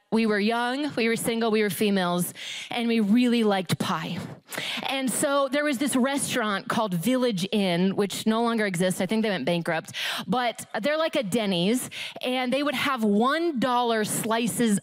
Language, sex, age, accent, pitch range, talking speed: English, female, 20-39, American, 210-270 Hz, 175 wpm